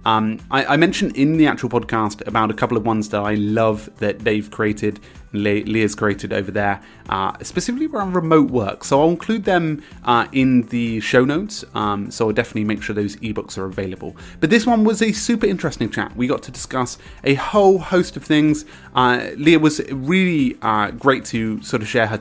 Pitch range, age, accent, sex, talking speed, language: 110-155 Hz, 30-49, British, male, 205 wpm, English